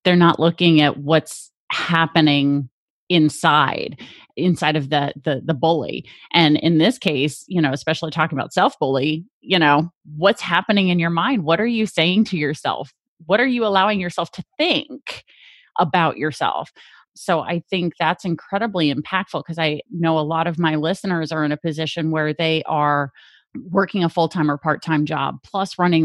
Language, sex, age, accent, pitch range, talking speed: English, female, 30-49, American, 160-190 Hz, 170 wpm